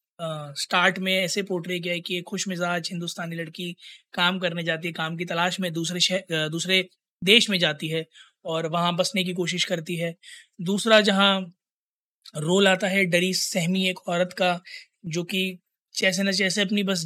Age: 20-39